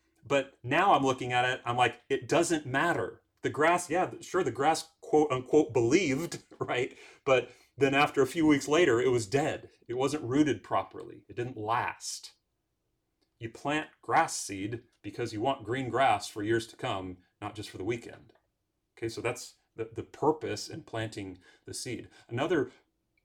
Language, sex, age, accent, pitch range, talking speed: English, male, 30-49, American, 110-140 Hz, 175 wpm